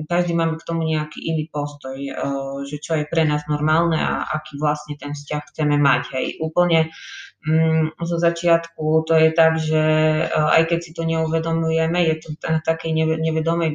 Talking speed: 165 wpm